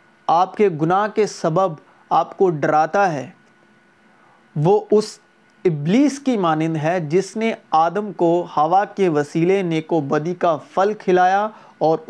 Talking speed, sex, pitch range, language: 140 wpm, male, 165-210 Hz, Urdu